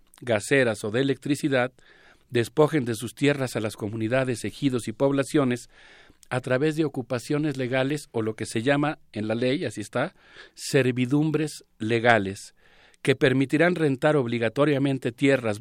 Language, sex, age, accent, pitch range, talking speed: Spanish, male, 50-69, Mexican, 115-145 Hz, 140 wpm